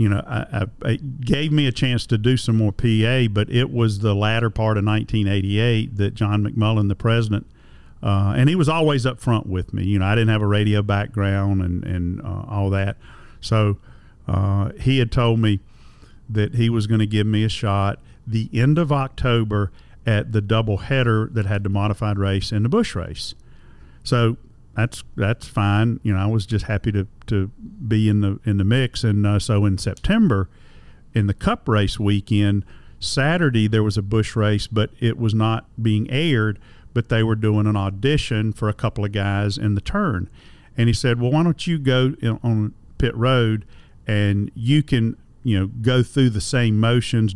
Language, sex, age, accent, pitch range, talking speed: English, male, 50-69, American, 105-115 Hz, 195 wpm